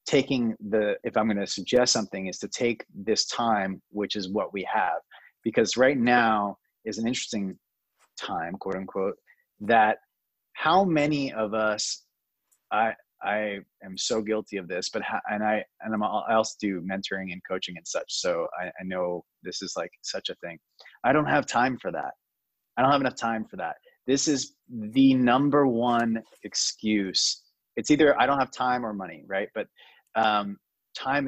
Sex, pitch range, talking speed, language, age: male, 105-135 Hz, 180 wpm, English, 30-49